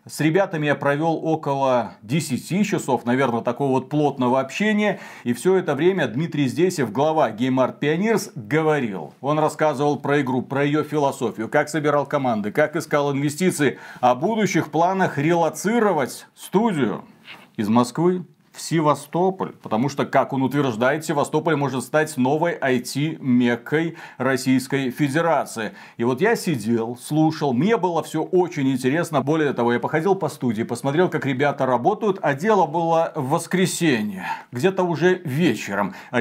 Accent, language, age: native, Russian, 40-59